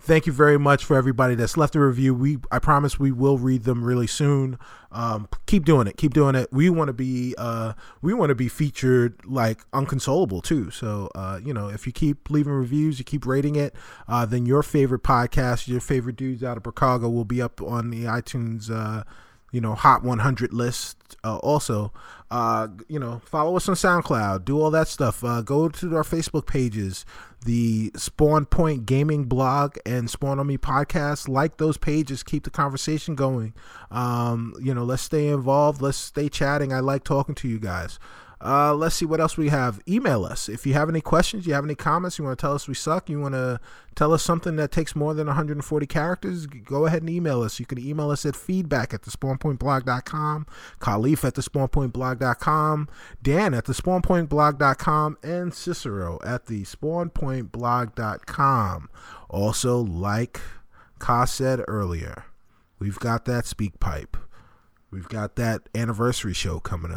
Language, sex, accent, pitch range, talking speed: English, male, American, 115-150 Hz, 185 wpm